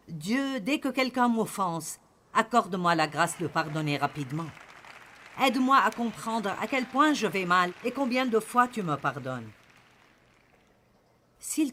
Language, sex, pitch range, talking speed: French, female, 160-235 Hz, 145 wpm